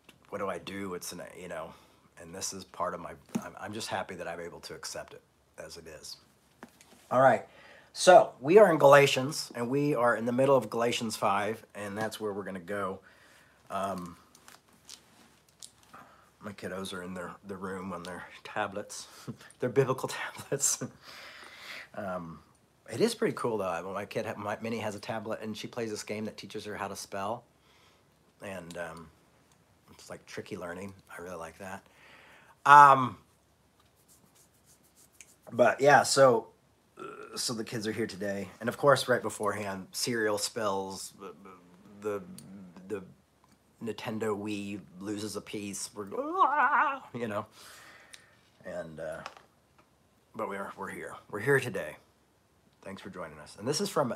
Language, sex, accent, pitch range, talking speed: English, male, American, 95-120 Hz, 160 wpm